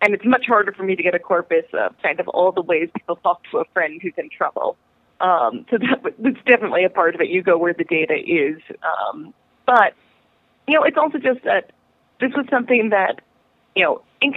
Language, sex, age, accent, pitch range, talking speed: English, female, 30-49, American, 170-230 Hz, 215 wpm